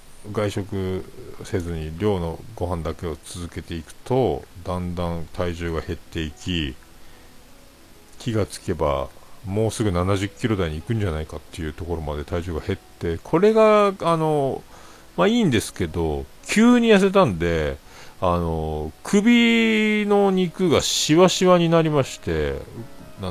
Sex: male